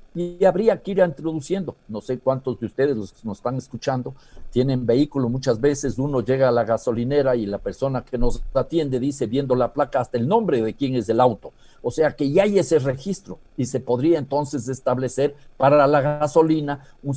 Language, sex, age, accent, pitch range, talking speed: Spanish, male, 50-69, Mexican, 125-160 Hz, 200 wpm